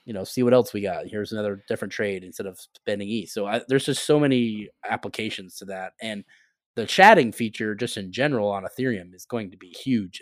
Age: 20-39